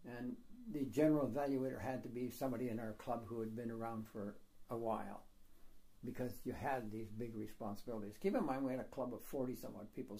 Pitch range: 130-195 Hz